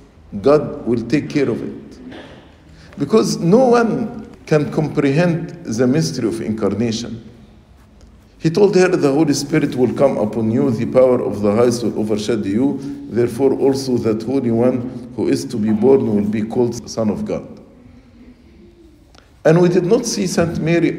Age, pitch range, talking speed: 50-69, 105-140 Hz, 160 wpm